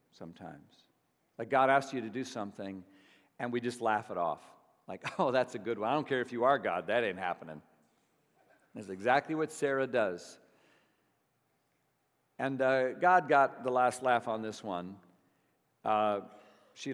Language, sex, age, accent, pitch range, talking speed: English, male, 50-69, American, 135-200 Hz, 165 wpm